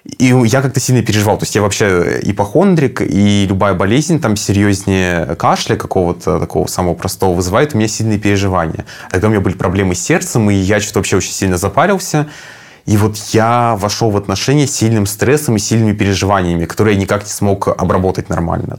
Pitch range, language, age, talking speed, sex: 95-110 Hz, Russian, 20-39, 185 wpm, male